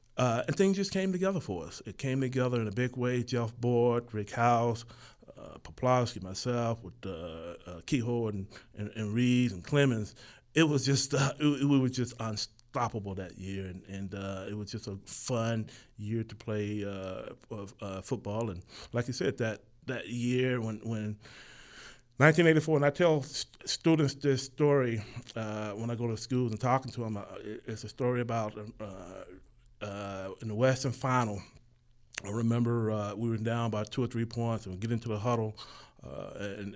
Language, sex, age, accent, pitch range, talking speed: English, male, 30-49, American, 105-125 Hz, 190 wpm